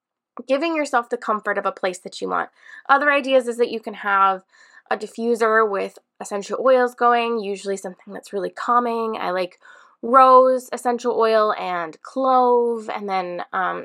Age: 10-29